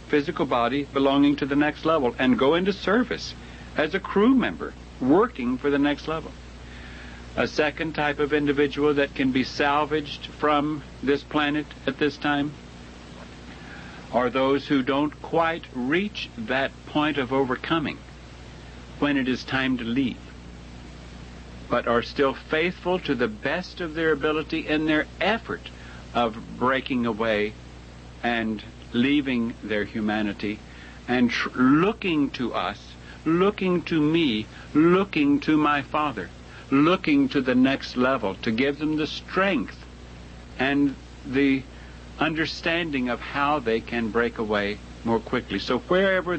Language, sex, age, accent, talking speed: English, male, 60-79, American, 135 wpm